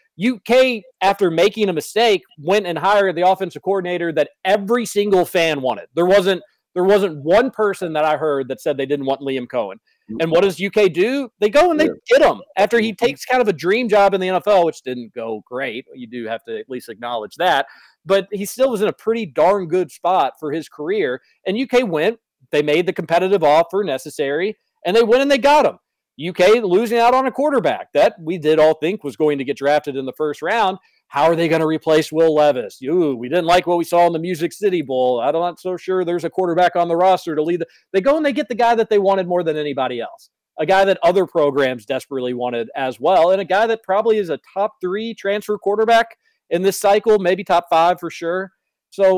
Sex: male